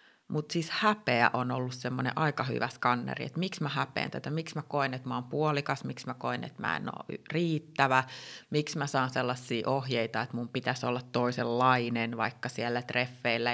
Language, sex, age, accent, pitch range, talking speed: Finnish, female, 30-49, native, 120-135 Hz, 185 wpm